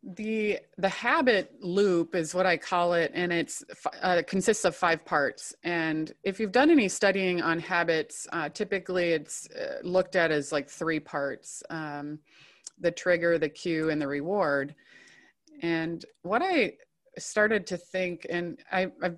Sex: female